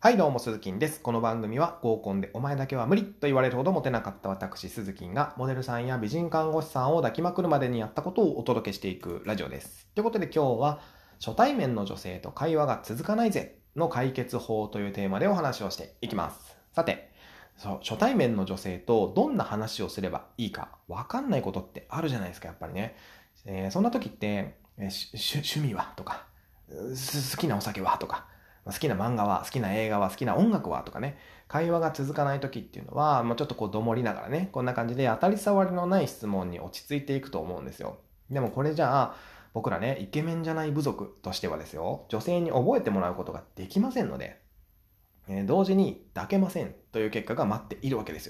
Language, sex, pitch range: Japanese, male, 100-150 Hz